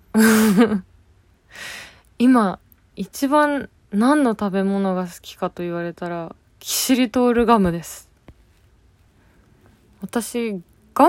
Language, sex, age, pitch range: Japanese, female, 20-39, 175-235 Hz